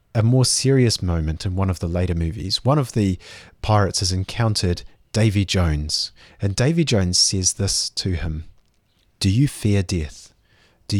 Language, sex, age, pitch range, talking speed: English, male, 30-49, 90-115 Hz, 165 wpm